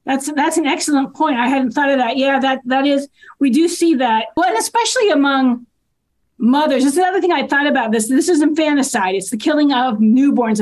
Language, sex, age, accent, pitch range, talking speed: English, female, 40-59, American, 220-285 Hz, 215 wpm